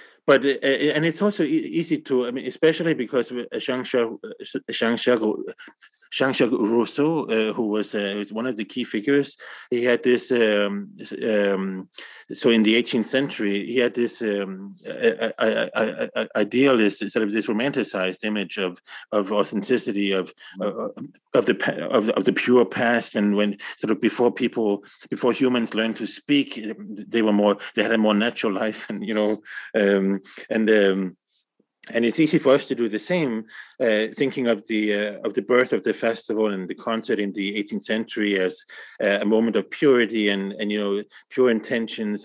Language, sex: English, male